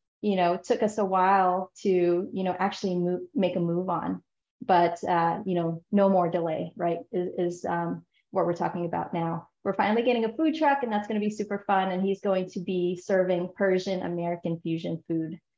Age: 30-49